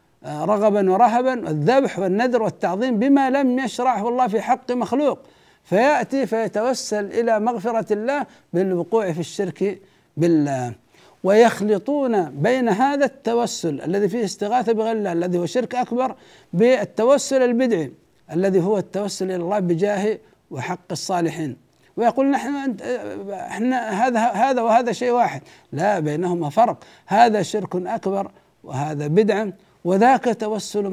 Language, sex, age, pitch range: Arabic, male, 60-79, 185-250 Hz